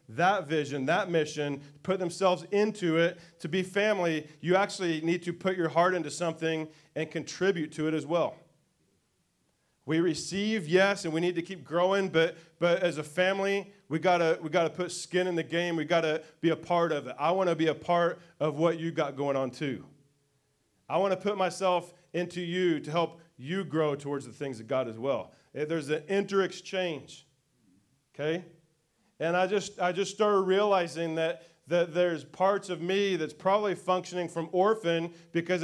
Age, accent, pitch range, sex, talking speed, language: 30-49, American, 155-180 Hz, male, 185 wpm, English